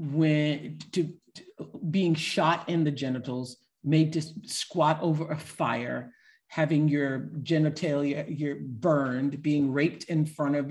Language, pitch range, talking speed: English, 130-160 Hz, 135 wpm